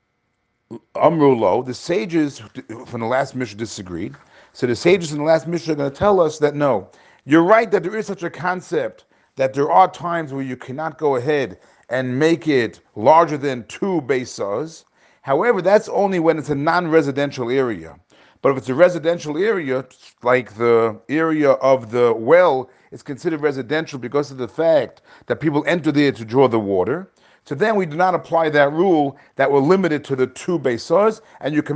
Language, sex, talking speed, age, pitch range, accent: English, male, 190 wpm, 40-59, 130-170 Hz, American